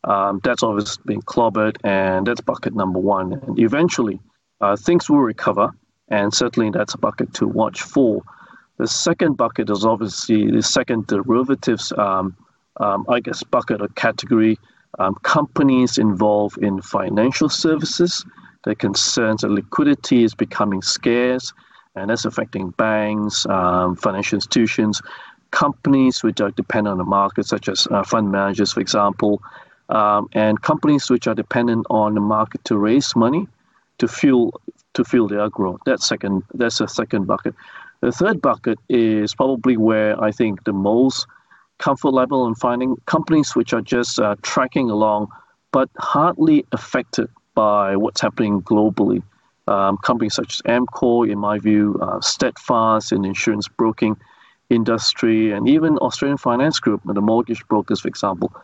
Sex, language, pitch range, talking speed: male, English, 105-125 Hz, 150 wpm